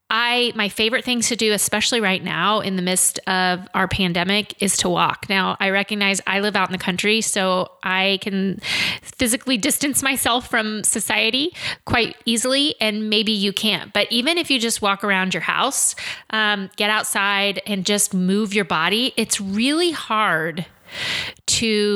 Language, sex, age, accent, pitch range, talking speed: English, female, 30-49, American, 190-235 Hz, 170 wpm